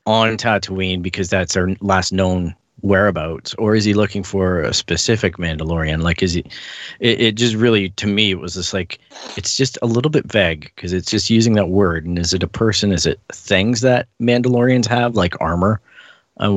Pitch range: 95-115 Hz